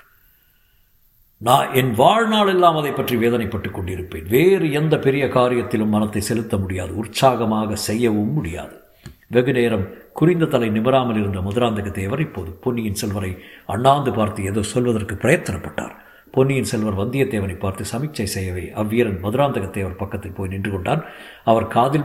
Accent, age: native, 50-69